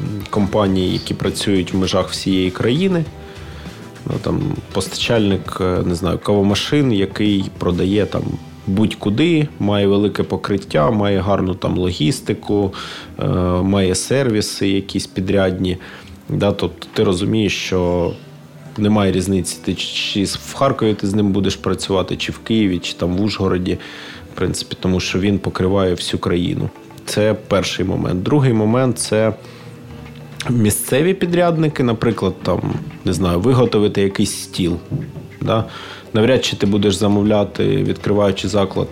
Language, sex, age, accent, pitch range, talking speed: Ukrainian, male, 30-49, native, 95-115 Hz, 130 wpm